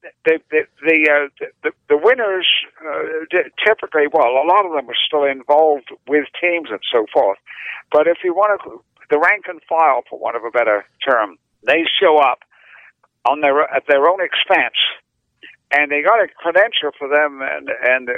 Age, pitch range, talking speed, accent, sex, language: 60-79, 145-180 Hz, 180 wpm, American, male, English